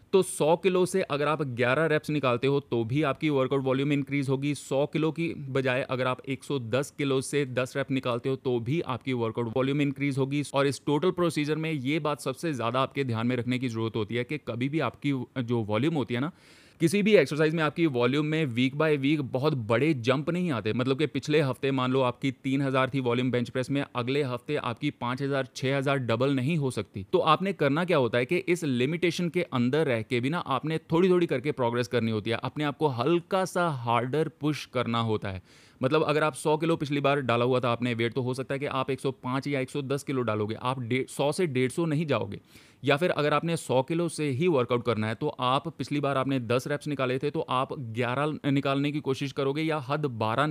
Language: Hindi